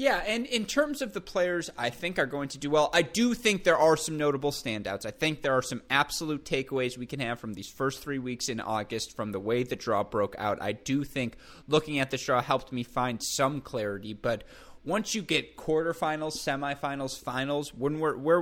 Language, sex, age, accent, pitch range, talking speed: English, male, 20-39, American, 115-150 Hz, 215 wpm